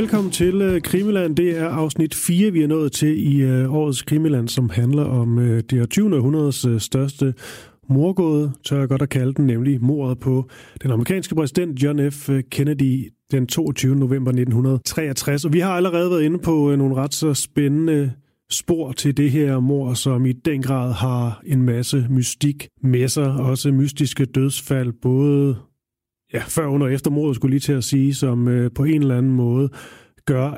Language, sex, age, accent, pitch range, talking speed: Danish, male, 30-49, native, 125-150 Hz, 180 wpm